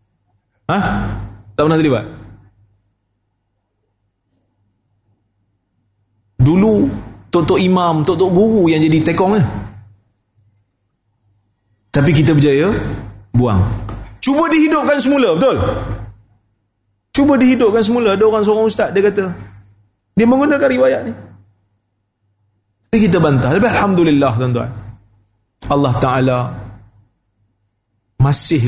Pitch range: 105-155 Hz